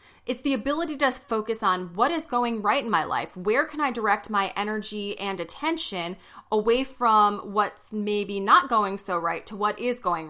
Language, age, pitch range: English, 30-49, 190-245 Hz